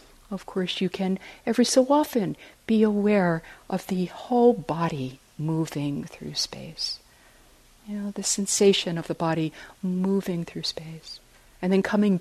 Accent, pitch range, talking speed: American, 150-195 Hz, 145 wpm